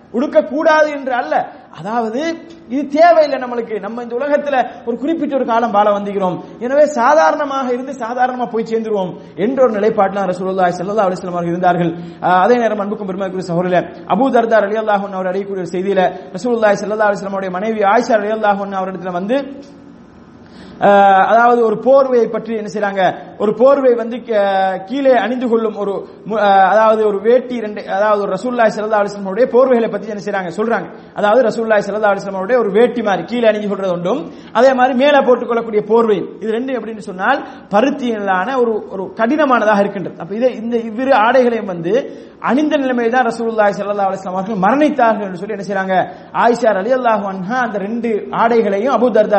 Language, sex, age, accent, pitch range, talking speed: English, male, 30-49, Indian, 195-245 Hz, 115 wpm